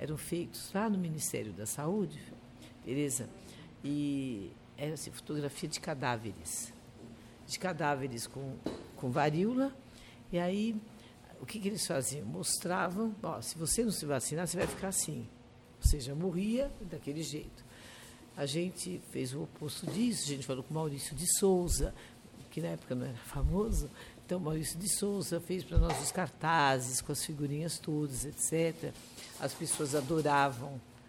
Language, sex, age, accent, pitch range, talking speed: Portuguese, female, 60-79, Brazilian, 135-185 Hz, 145 wpm